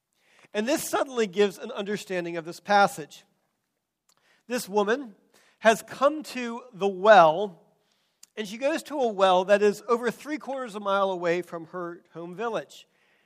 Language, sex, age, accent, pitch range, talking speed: English, male, 40-59, American, 185-235 Hz, 155 wpm